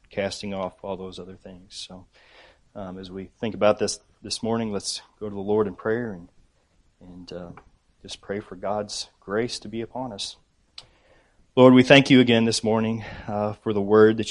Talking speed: 195 wpm